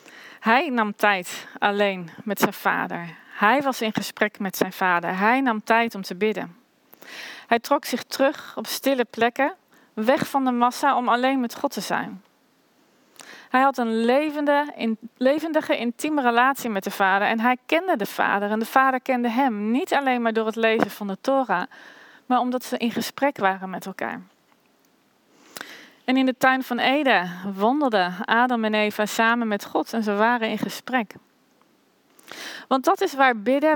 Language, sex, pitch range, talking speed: Dutch, female, 220-270 Hz, 170 wpm